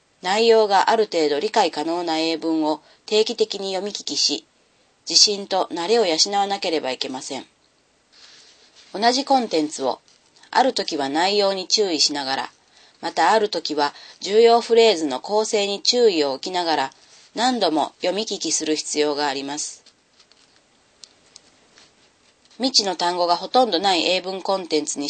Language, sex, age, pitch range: Japanese, female, 40-59, 155-210 Hz